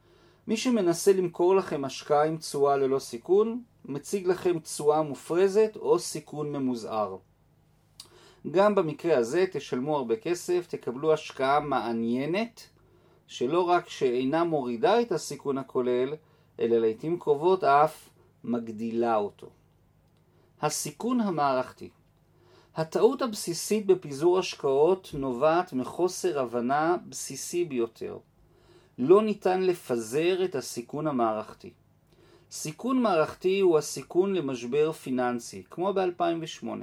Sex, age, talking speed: male, 40-59, 105 wpm